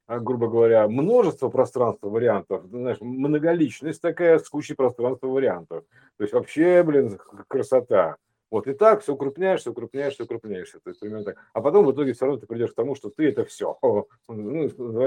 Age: 50-69